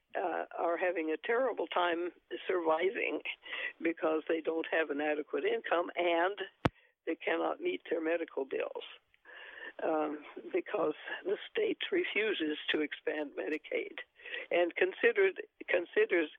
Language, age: English, 60-79